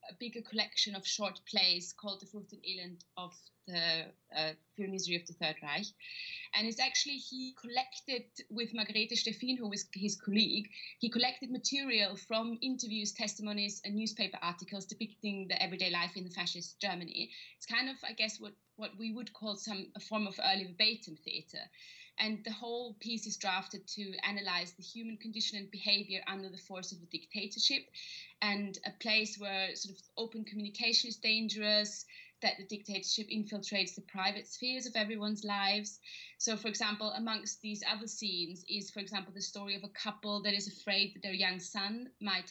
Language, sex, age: English, female, 20-39